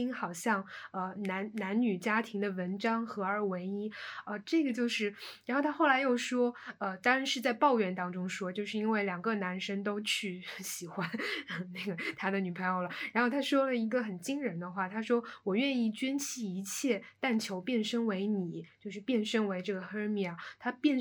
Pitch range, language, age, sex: 200-260 Hz, Chinese, 20-39, female